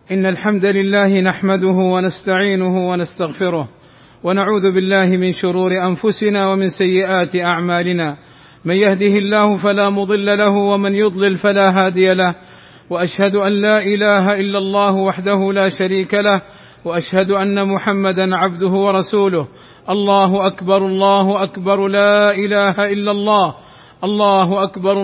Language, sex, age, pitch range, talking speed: Arabic, male, 50-69, 190-210 Hz, 120 wpm